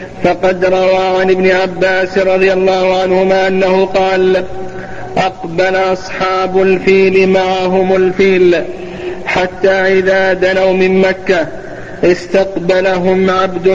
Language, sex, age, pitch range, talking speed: Arabic, male, 50-69, 185-190 Hz, 95 wpm